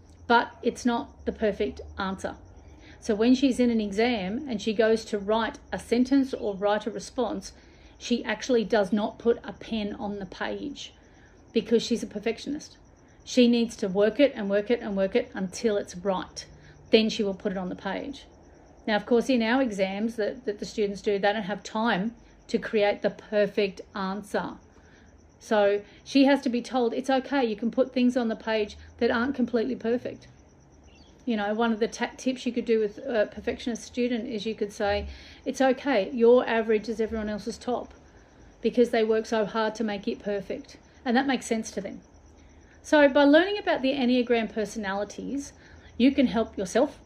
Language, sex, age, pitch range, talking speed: English, female, 40-59, 205-245 Hz, 190 wpm